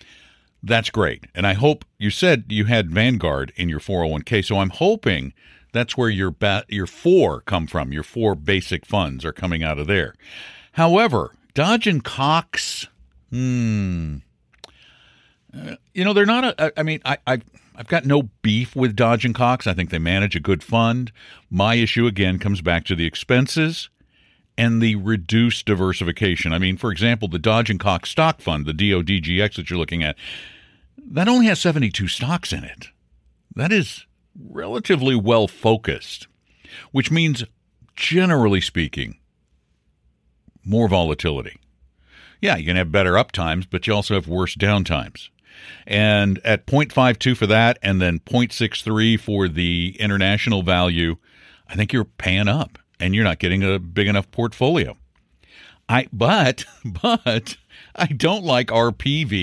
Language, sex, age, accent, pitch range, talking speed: English, male, 60-79, American, 90-120 Hz, 155 wpm